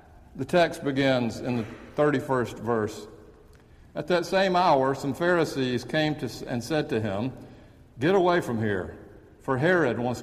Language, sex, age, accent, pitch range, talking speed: English, male, 60-79, American, 105-135 Hz, 155 wpm